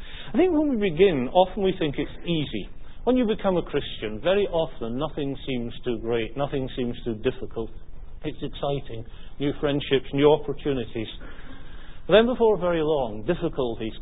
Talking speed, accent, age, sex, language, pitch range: 155 wpm, British, 50-69, male, English, 115-155 Hz